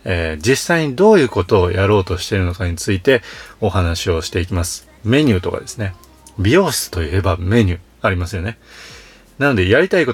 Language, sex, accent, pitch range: Japanese, male, native, 90-115 Hz